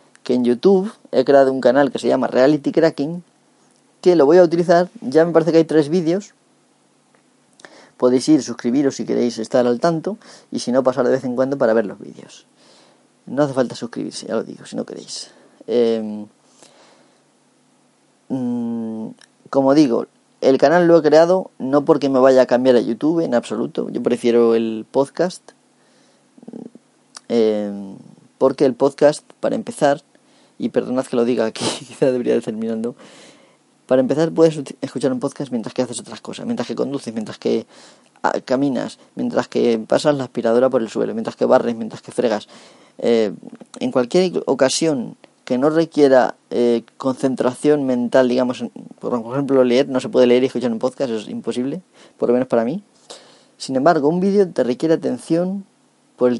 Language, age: Spanish, 30-49